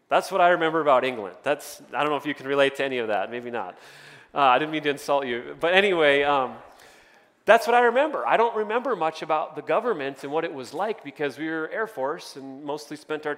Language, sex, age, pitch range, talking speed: English, male, 30-49, 160-245 Hz, 245 wpm